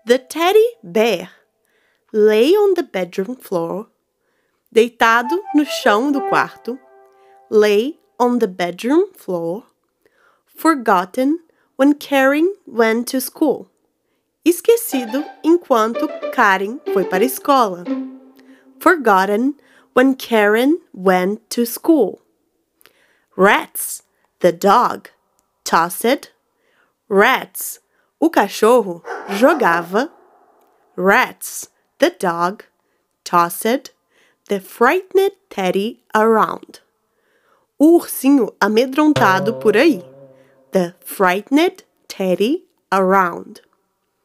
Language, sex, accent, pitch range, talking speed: Portuguese, female, Brazilian, 200-335 Hz, 85 wpm